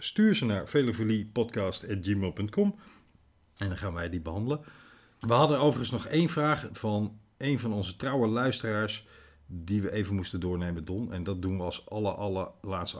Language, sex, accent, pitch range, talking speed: Dutch, male, Dutch, 95-120 Hz, 165 wpm